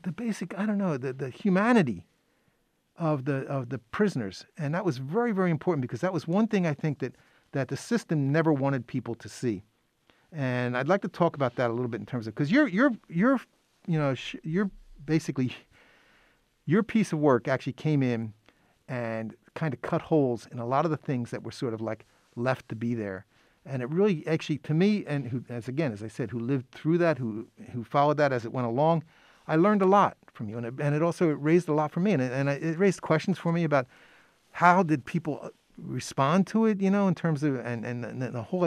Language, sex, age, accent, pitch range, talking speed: English, male, 40-59, American, 125-170 Hz, 235 wpm